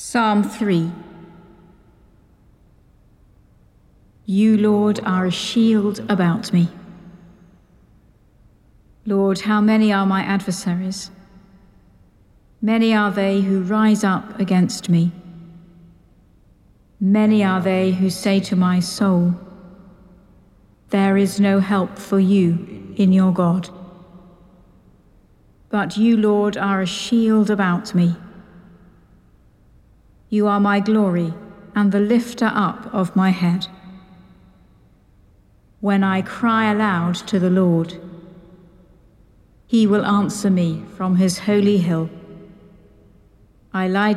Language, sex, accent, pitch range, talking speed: English, female, British, 180-205 Hz, 105 wpm